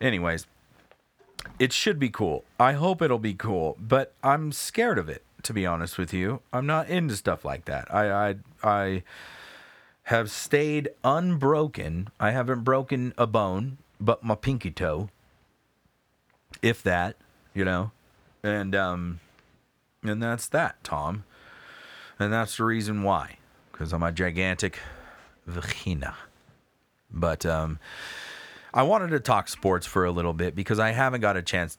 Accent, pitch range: American, 85-110 Hz